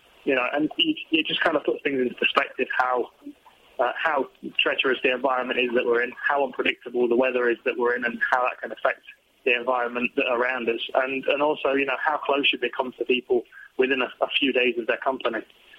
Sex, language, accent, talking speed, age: male, English, British, 215 wpm, 20-39